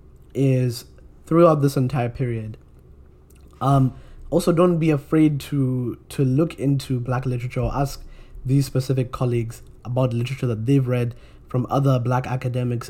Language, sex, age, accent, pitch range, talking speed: English, male, 20-39, South African, 115-135 Hz, 140 wpm